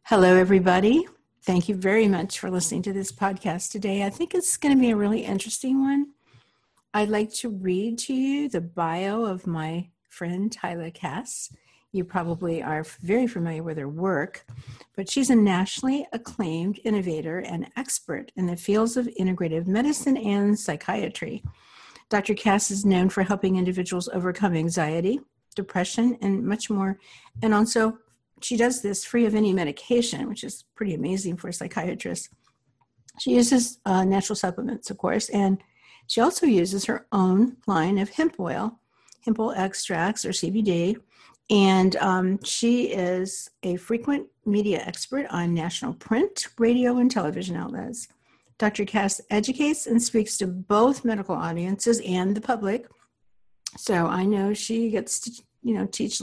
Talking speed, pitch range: 155 wpm, 185-235 Hz